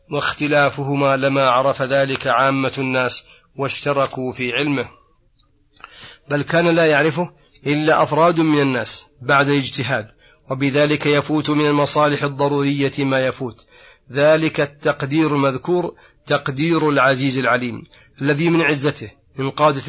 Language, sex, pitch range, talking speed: Arabic, male, 135-150 Hz, 110 wpm